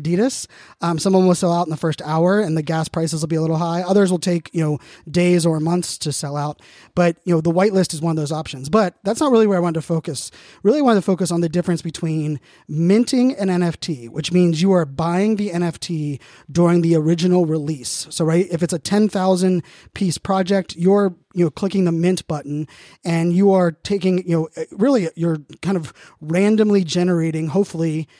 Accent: American